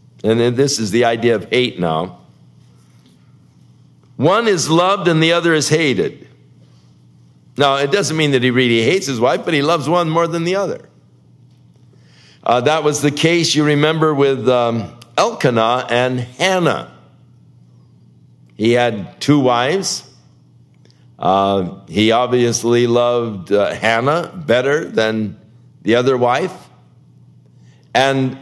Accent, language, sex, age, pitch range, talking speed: American, English, male, 60-79, 110-150 Hz, 130 wpm